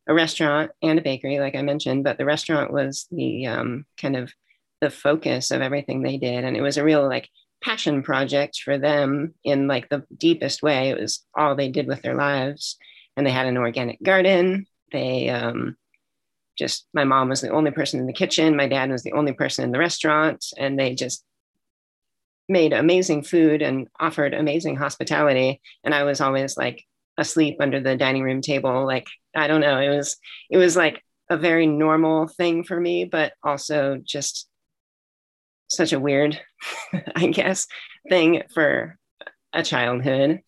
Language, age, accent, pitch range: English, 30-49, American, 135-155 Hz